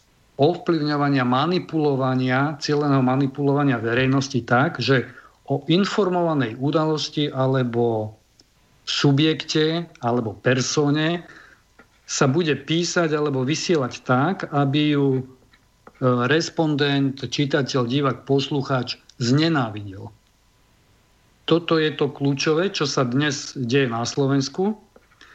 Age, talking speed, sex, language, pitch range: 50-69, 90 wpm, male, Slovak, 125-150 Hz